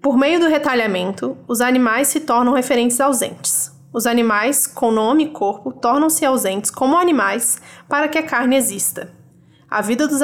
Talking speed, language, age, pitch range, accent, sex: 165 wpm, Portuguese, 20-39, 220-270 Hz, Brazilian, female